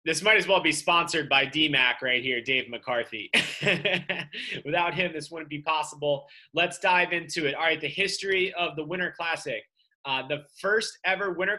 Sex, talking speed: male, 180 wpm